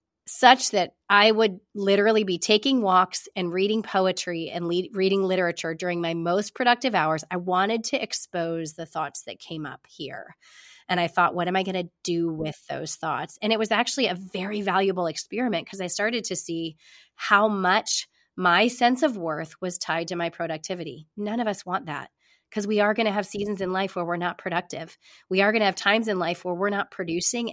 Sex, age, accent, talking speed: female, 30-49, American, 205 wpm